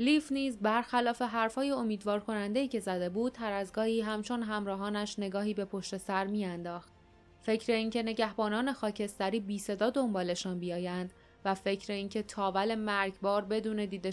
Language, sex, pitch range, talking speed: Persian, female, 195-230 Hz, 140 wpm